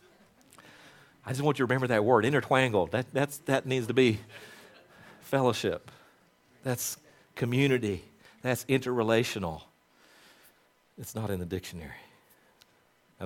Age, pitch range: 50-69, 100-150 Hz